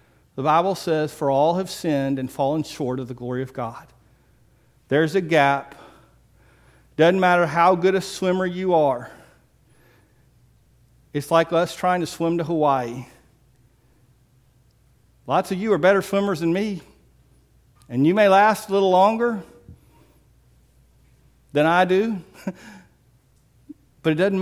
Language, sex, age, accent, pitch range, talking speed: English, male, 50-69, American, 135-195 Hz, 135 wpm